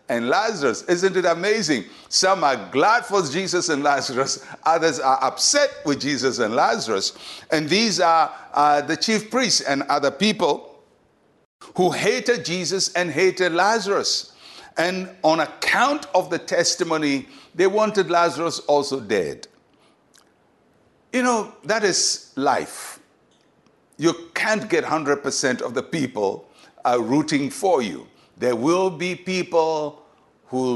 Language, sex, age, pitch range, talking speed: English, male, 60-79, 145-190 Hz, 130 wpm